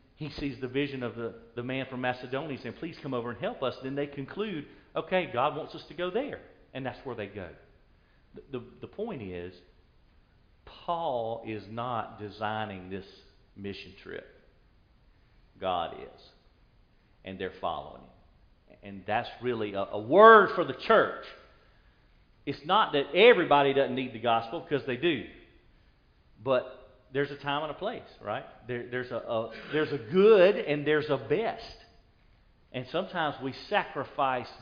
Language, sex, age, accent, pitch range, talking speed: English, male, 50-69, American, 120-170 Hz, 160 wpm